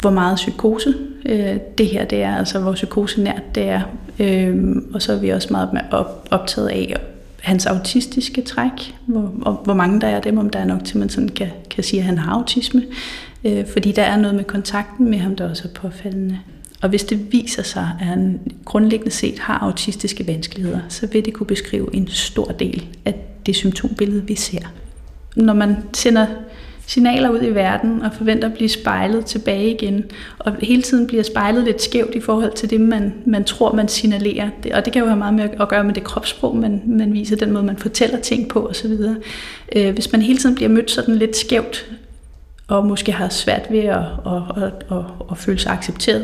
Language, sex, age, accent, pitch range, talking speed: Danish, female, 30-49, native, 195-225 Hz, 200 wpm